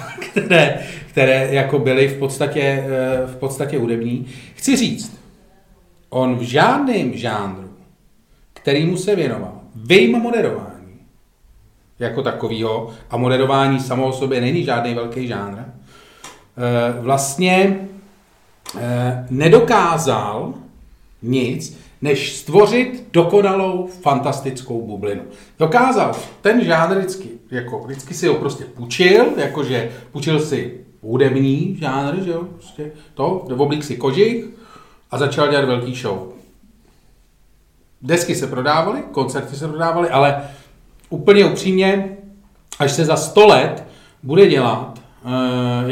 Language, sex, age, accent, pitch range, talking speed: Czech, male, 40-59, native, 125-170 Hz, 110 wpm